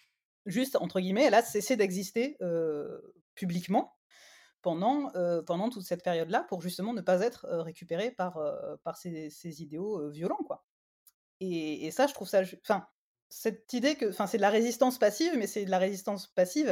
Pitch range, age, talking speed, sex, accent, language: 180-250 Hz, 30-49, 190 wpm, female, French, French